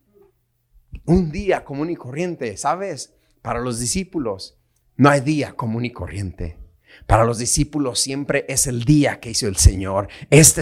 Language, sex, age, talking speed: Spanish, male, 30-49, 155 wpm